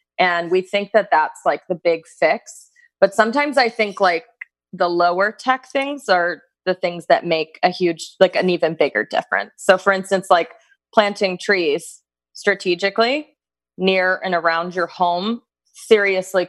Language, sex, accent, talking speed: English, female, American, 155 wpm